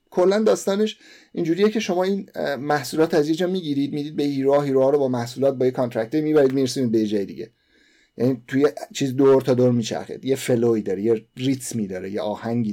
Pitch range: 115-145 Hz